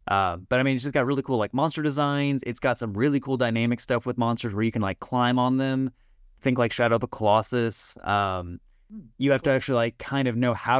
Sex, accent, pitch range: male, American, 100-125 Hz